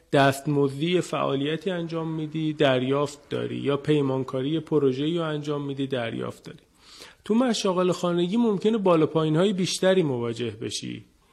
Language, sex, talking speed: Persian, male, 125 wpm